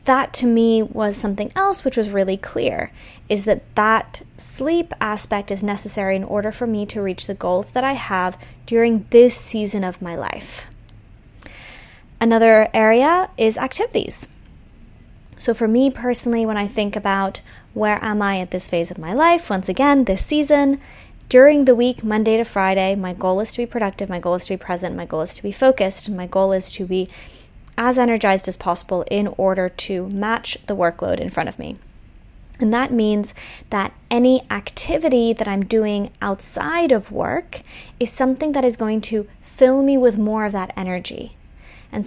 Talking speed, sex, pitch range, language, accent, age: 185 wpm, female, 190-250 Hz, English, American, 20-39